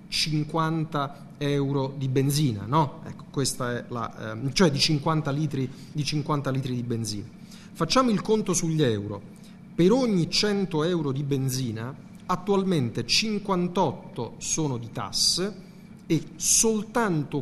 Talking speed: 125 wpm